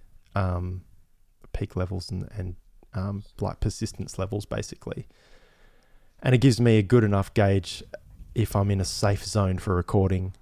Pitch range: 95-110 Hz